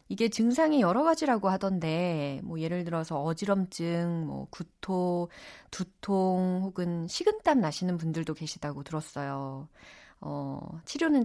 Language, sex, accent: Korean, female, native